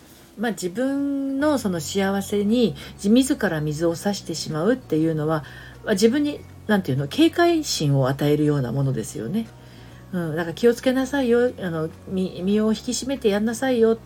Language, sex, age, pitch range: Japanese, female, 50-69, 150-240 Hz